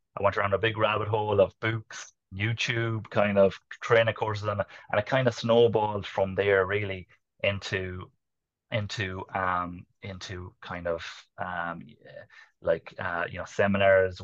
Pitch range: 95-110 Hz